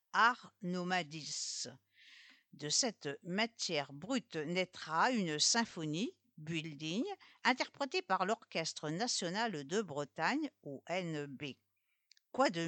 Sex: female